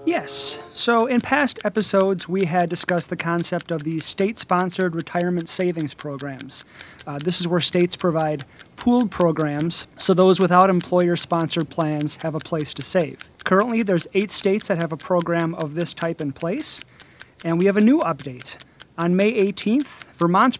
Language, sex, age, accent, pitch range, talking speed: English, male, 30-49, American, 160-190 Hz, 165 wpm